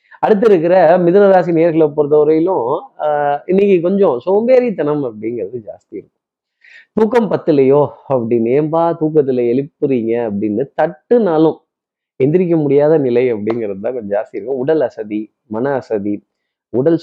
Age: 30-49